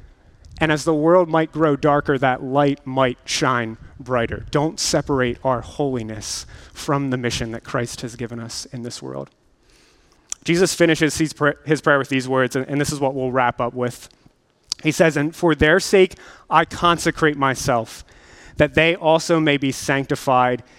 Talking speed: 165 wpm